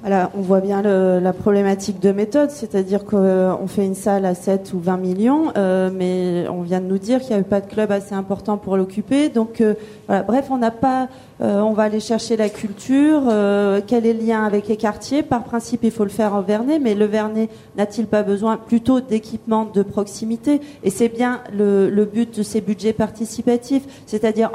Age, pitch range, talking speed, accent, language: 30-49, 200-235 Hz, 215 wpm, French, French